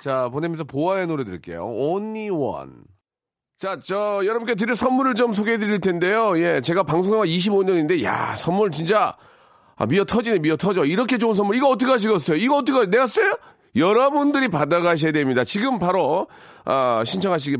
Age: 40-59